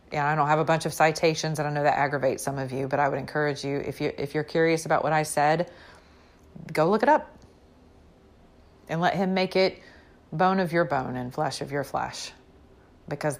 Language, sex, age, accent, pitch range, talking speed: English, female, 30-49, American, 140-170 Hz, 225 wpm